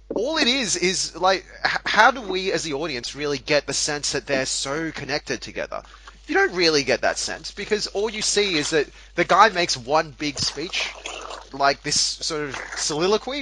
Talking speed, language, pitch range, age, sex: 190 wpm, English, 125-190 Hz, 30-49, male